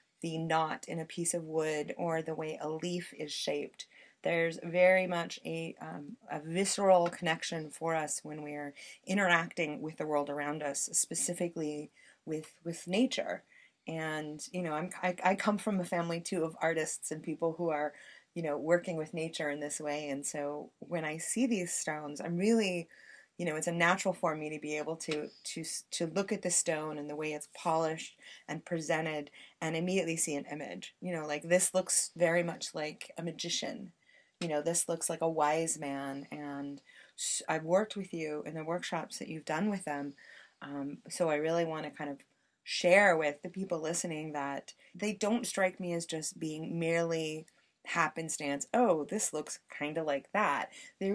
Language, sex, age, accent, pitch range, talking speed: English, female, 30-49, American, 150-175 Hz, 190 wpm